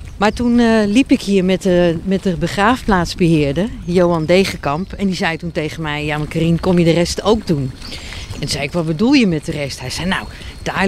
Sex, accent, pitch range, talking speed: female, Dutch, 170-220 Hz, 230 wpm